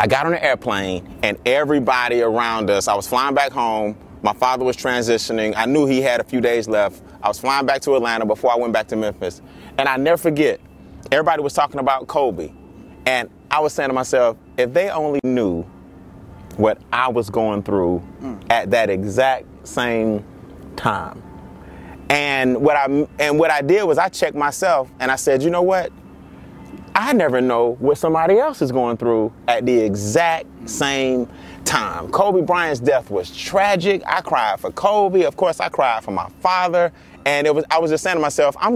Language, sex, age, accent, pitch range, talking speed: English, male, 30-49, American, 115-170 Hz, 190 wpm